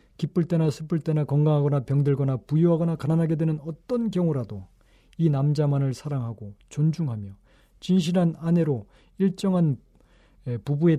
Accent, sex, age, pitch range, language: native, male, 40-59, 130-170 Hz, Korean